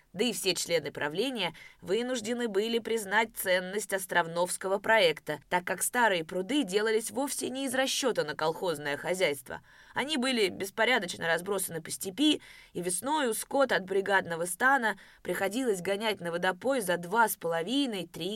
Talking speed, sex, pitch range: 145 wpm, female, 160-225 Hz